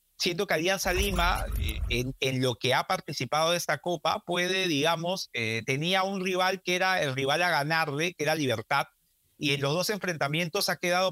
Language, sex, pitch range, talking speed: Spanish, male, 135-175 Hz, 185 wpm